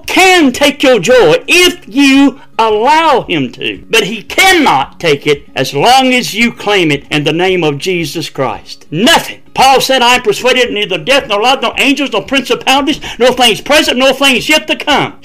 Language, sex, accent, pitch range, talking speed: English, male, American, 205-310 Hz, 190 wpm